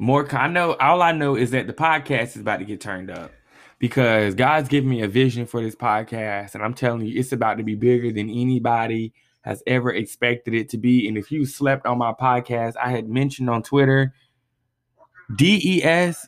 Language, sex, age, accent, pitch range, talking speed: English, male, 20-39, American, 115-140 Hz, 205 wpm